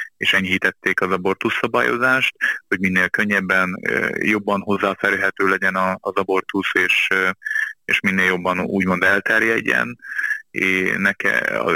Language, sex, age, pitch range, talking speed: Hungarian, male, 20-39, 95-100 Hz, 105 wpm